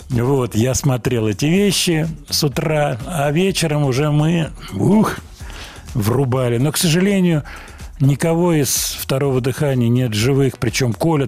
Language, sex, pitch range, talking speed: Russian, male, 105-135 Hz, 130 wpm